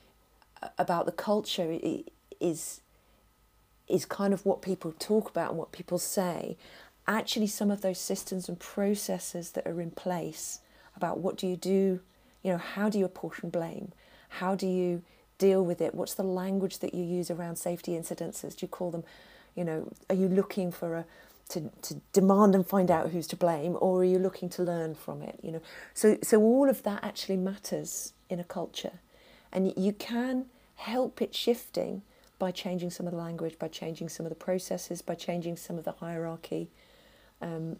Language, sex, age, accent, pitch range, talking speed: English, female, 40-59, British, 170-200 Hz, 185 wpm